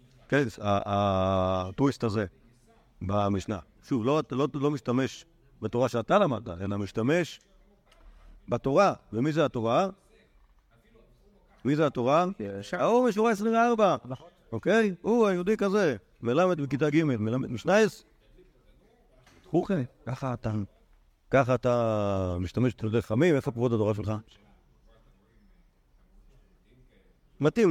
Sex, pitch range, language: male, 100-145 Hz, Hebrew